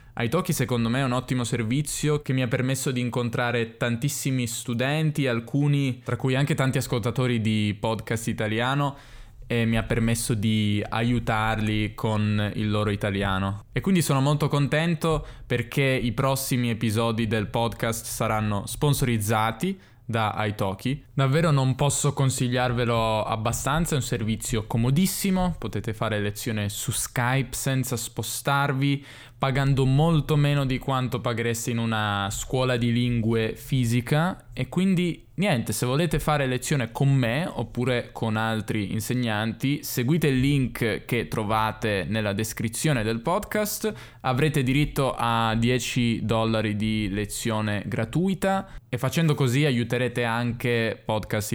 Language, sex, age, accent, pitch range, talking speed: Italian, male, 10-29, native, 110-140 Hz, 130 wpm